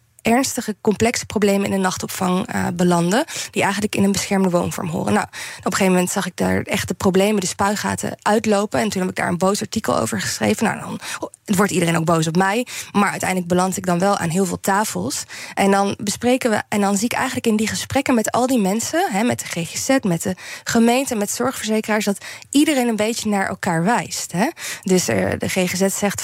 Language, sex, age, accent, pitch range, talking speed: Dutch, female, 20-39, Dutch, 185-220 Hz, 215 wpm